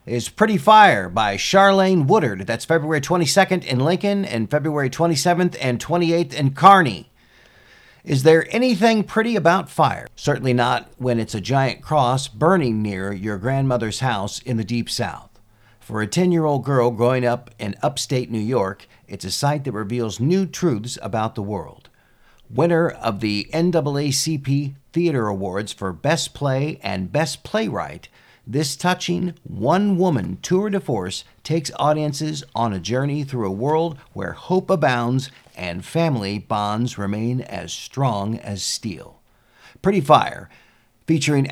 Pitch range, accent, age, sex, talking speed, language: 120-165 Hz, American, 50-69, male, 145 wpm, English